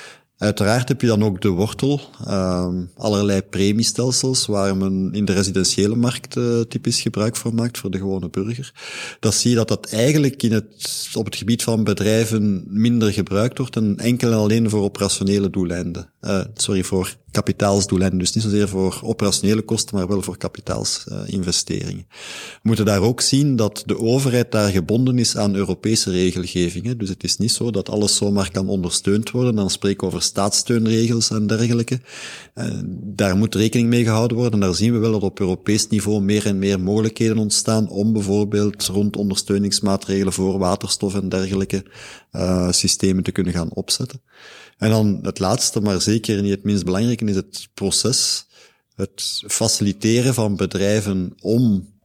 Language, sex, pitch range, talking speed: Dutch, male, 95-115 Hz, 170 wpm